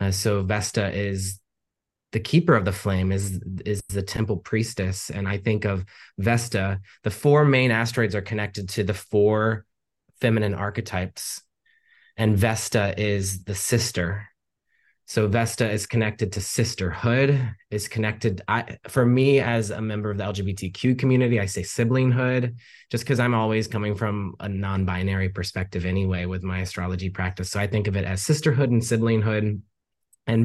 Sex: male